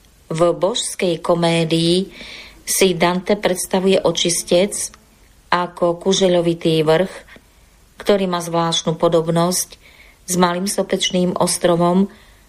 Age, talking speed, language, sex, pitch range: 40-59, 85 wpm, Slovak, female, 155-180 Hz